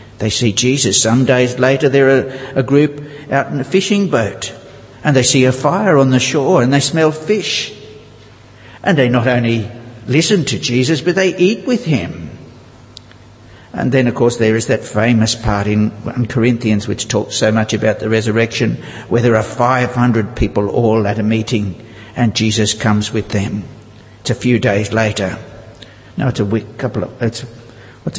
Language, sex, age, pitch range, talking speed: English, male, 60-79, 110-140 Hz, 185 wpm